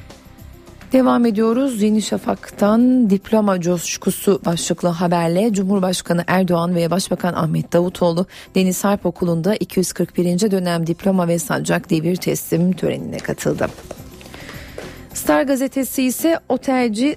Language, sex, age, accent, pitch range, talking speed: Turkish, female, 40-59, native, 175-220 Hz, 105 wpm